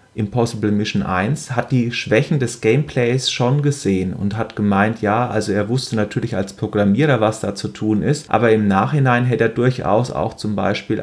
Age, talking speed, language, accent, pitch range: 30-49, 185 wpm, German, German, 105-125 Hz